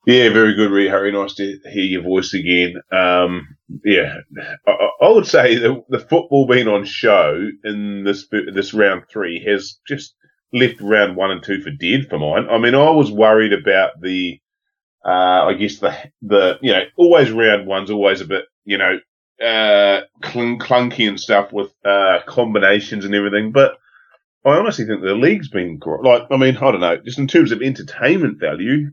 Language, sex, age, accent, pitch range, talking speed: English, male, 30-49, Australian, 105-155 Hz, 185 wpm